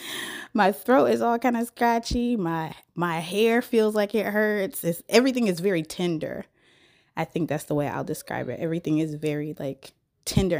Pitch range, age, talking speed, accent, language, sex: 160-215 Hz, 20-39, 180 wpm, American, English, female